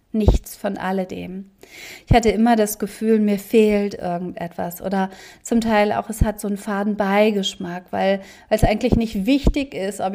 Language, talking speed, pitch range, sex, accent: German, 165 wpm, 195-225 Hz, female, German